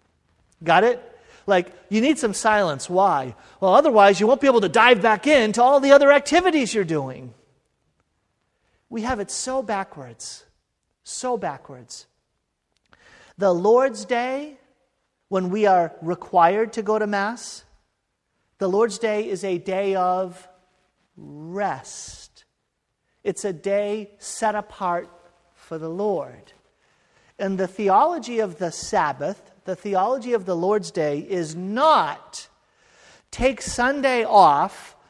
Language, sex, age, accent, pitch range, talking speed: English, male, 50-69, American, 180-245 Hz, 130 wpm